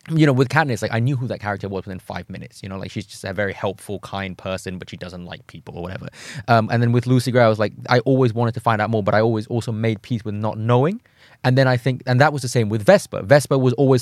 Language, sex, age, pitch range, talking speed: English, male, 20-39, 105-125 Hz, 300 wpm